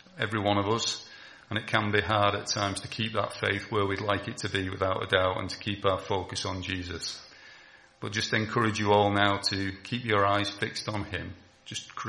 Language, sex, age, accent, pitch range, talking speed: English, male, 40-59, British, 100-110 Hz, 225 wpm